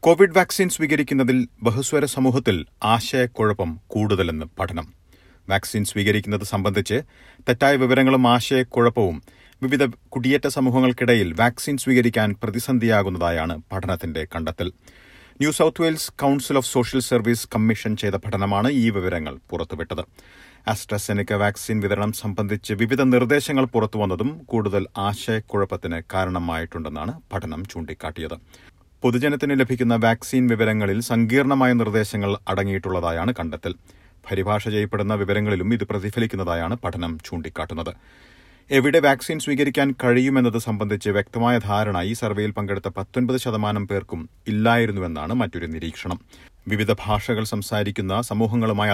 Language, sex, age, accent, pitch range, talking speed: Malayalam, male, 40-59, native, 95-125 Hz, 100 wpm